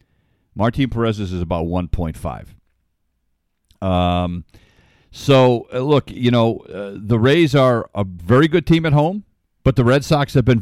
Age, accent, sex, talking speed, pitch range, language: 50-69, American, male, 155 wpm, 95-130 Hz, English